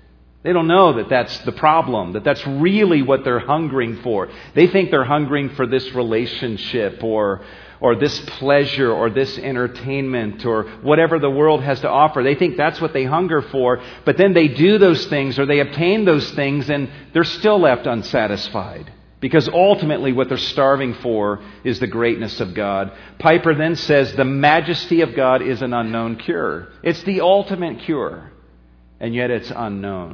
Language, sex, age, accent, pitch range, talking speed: English, male, 40-59, American, 105-145 Hz, 175 wpm